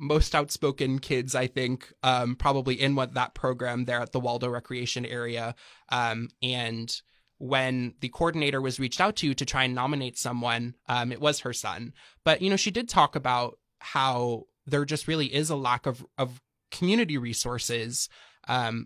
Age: 20-39